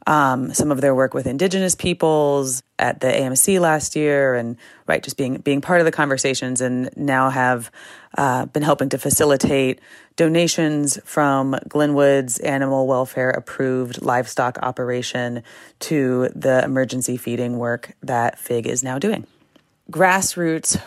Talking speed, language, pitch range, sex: 140 wpm, English, 130-155 Hz, female